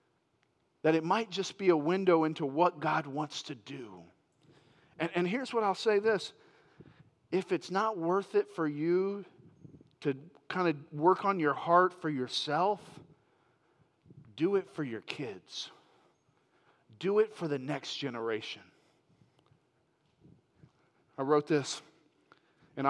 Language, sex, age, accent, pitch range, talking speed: English, male, 40-59, American, 155-240 Hz, 135 wpm